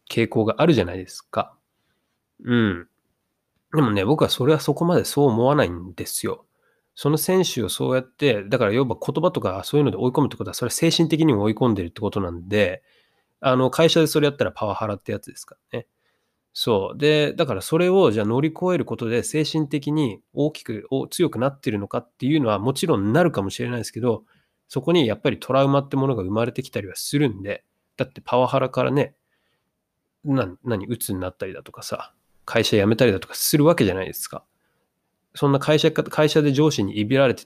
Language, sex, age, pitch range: Japanese, male, 20-39, 110-155 Hz